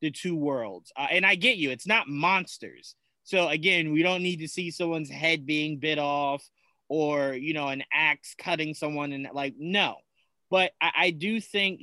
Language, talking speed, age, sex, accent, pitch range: English, 195 wpm, 30-49, male, American, 140-175 Hz